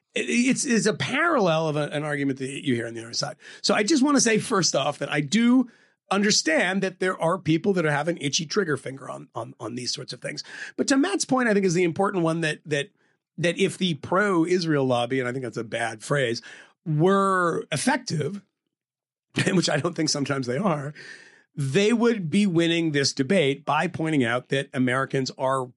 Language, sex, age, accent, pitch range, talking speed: English, male, 30-49, American, 130-180 Hz, 205 wpm